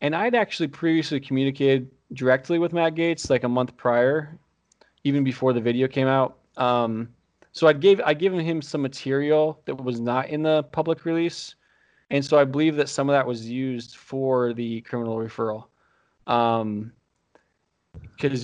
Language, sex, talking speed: English, male, 165 wpm